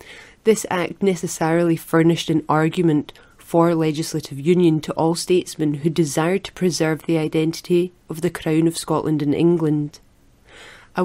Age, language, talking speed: 30-49, English, 140 wpm